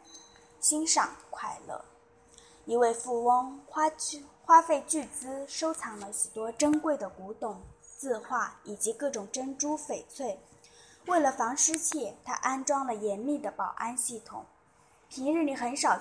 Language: Chinese